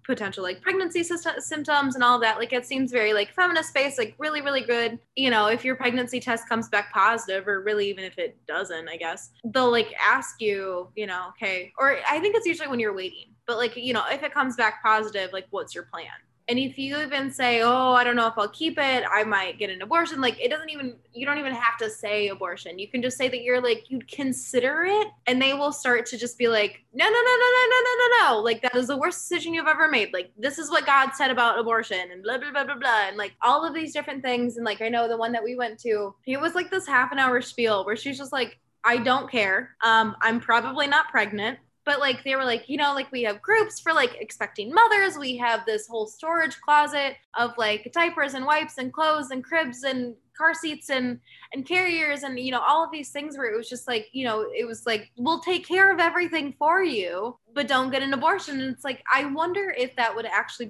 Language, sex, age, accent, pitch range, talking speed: English, female, 10-29, American, 225-295 Hz, 250 wpm